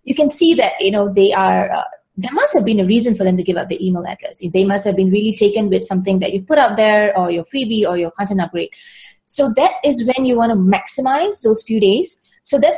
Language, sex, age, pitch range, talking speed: English, female, 20-39, 190-250 Hz, 265 wpm